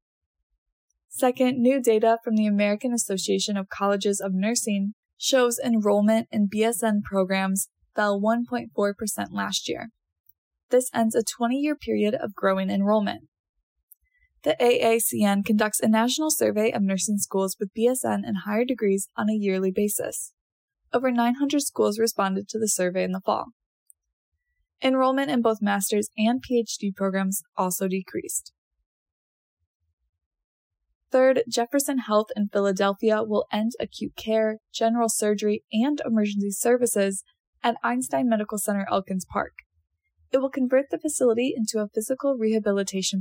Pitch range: 195-240 Hz